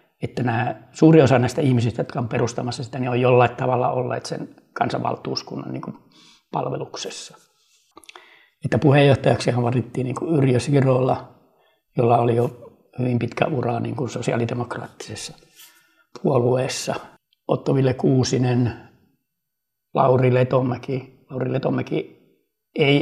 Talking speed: 110 wpm